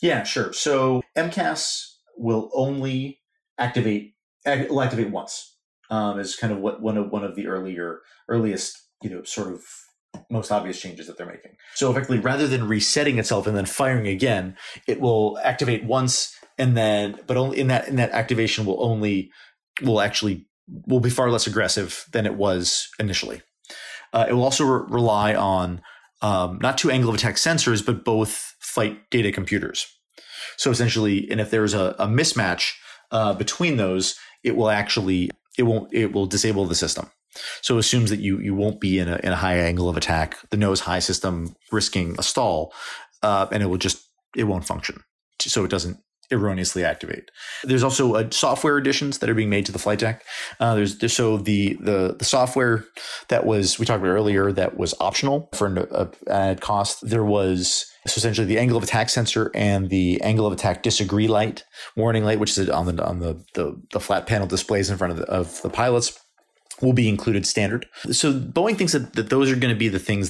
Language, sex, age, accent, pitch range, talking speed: English, male, 30-49, American, 100-125 Hz, 195 wpm